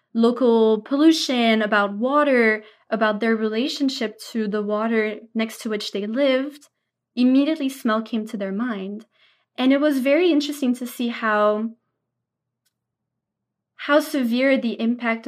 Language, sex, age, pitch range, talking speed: English, female, 20-39, 215-255 Hz, 130 wpm